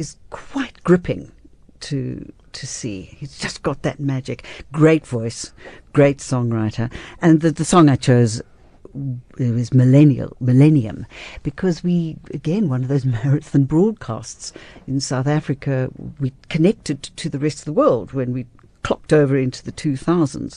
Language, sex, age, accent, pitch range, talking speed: English, female, 60-79, British, 125-155 Hz, 150 wpm